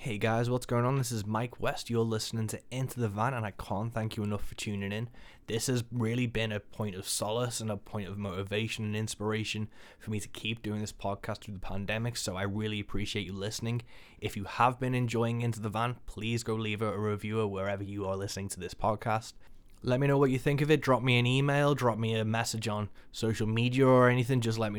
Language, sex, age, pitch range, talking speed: English, male, 10-29, 105-120 Hz, 240 wpm